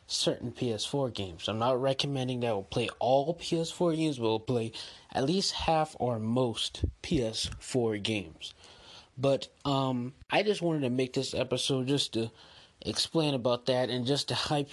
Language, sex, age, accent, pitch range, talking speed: English, male, 20-39, American, 110-135 Hz, 165 wpm